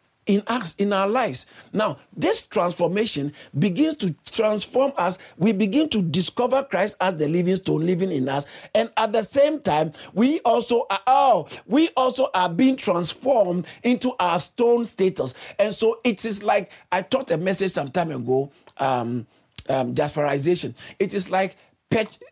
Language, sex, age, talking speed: English, male, 50-69, 160 wpm